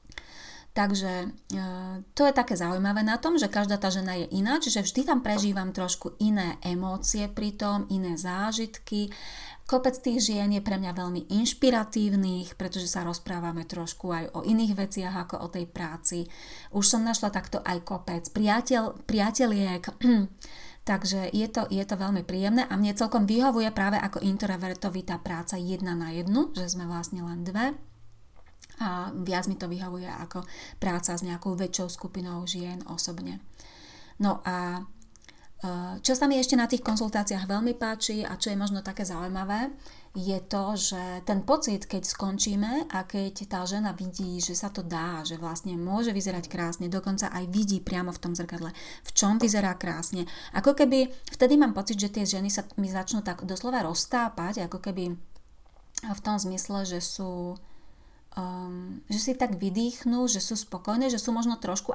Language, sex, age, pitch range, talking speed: Slovak, female, 30-49, 180-215 Hz, 165 wpm